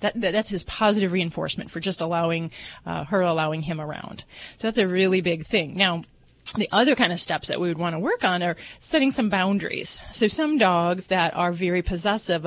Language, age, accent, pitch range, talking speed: English, 30-49, American, 170-215 Hz, 205 wpm